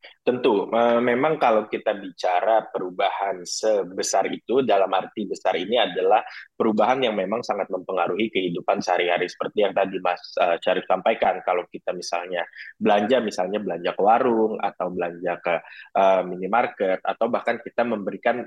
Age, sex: 20-39, male